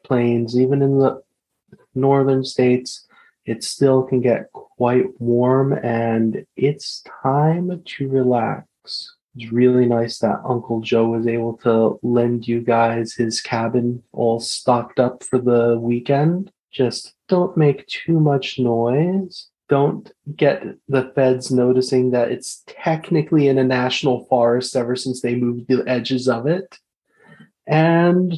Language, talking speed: English, 135 wpm